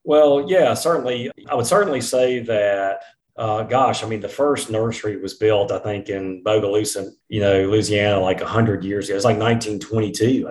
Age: 40-59